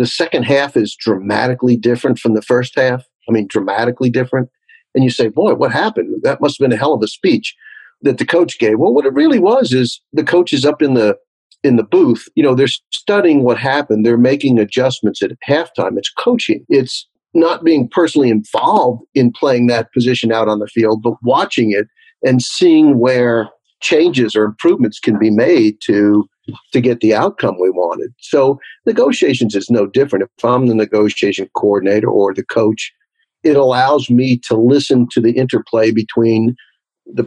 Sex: male